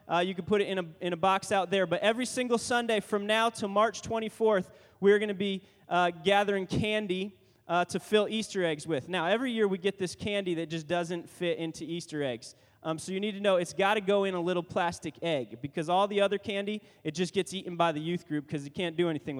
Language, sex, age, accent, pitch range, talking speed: English, male, 20-39, American, 150-200 Hz, 250 wpm